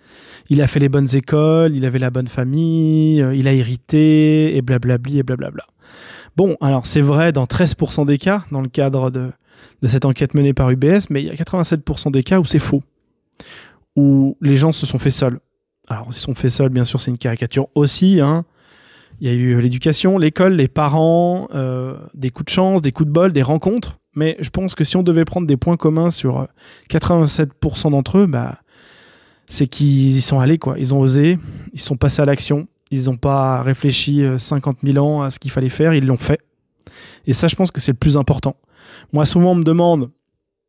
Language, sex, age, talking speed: French, male, 20-39, 210 wpm